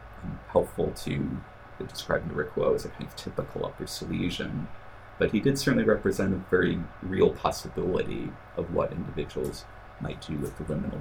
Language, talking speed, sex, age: English, 155 wpm, male, 30-49